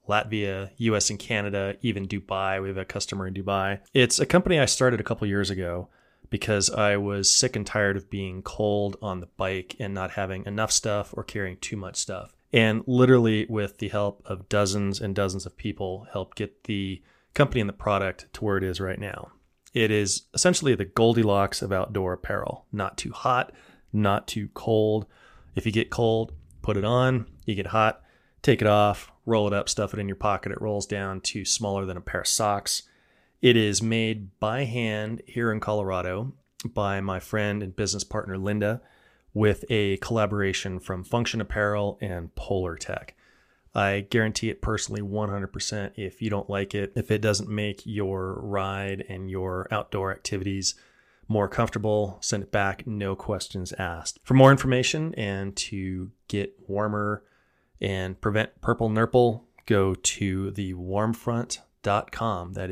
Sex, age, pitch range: male, 20-39, 95-110 Hz